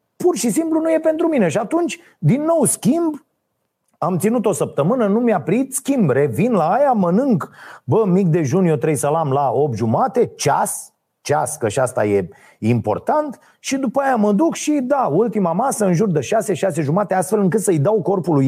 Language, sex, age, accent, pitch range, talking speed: Romanian, male, 30-49, native, 130-200 Hz, 195 wpm